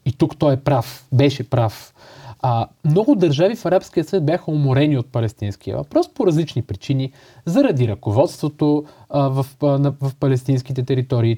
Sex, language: male, Bulgarian